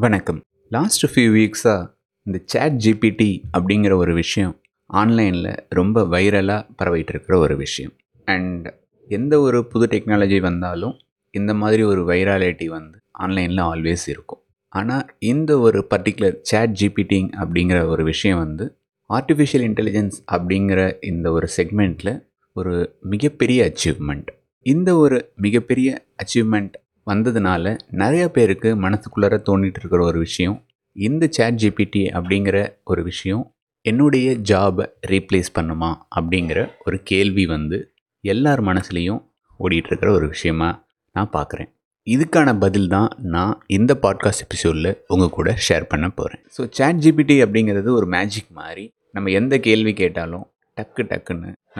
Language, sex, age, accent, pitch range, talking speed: Tamil, male, 30-49, native, 90-110 Hz, 125 wpm